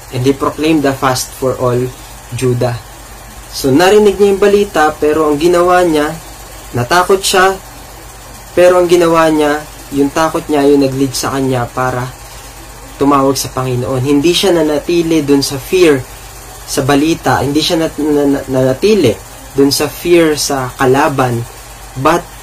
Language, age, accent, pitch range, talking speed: English, 20-39, Filipino, 125-155 Hz, 135 wpm